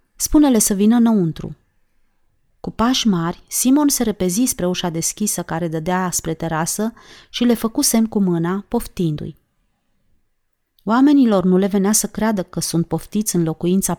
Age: 30-49